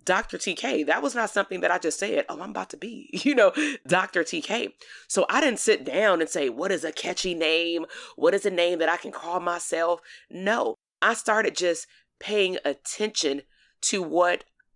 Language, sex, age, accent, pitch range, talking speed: English, female, 30-49, American, 155-215 Hz, 195 wpm